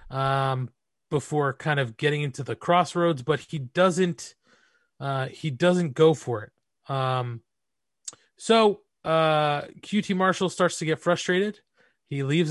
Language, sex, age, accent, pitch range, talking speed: English, male, 30-49, American, 130-175 Hz, 135 wpm